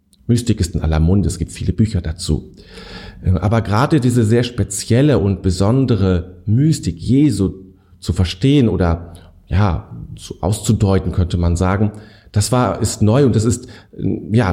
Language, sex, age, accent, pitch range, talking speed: German, male, 40-59, German, 95-120 Hz, 150 wpm